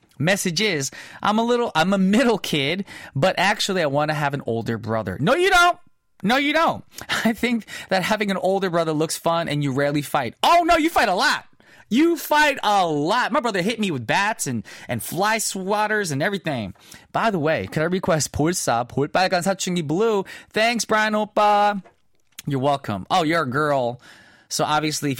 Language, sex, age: English, male, 20-39